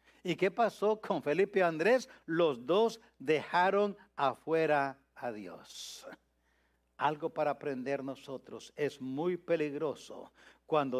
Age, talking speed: 60-79, 115 wpm